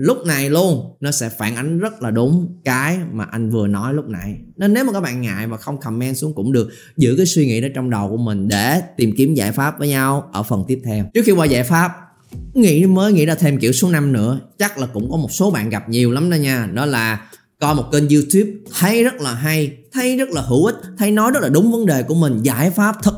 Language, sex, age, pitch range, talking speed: Vietnamese, male, 20-39, 125-185 Hz, 265 wpm